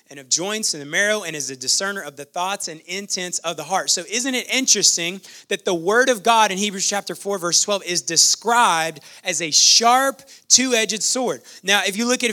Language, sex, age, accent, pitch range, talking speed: English, male, 30-49, American, 185-235 Hz, 225 wpm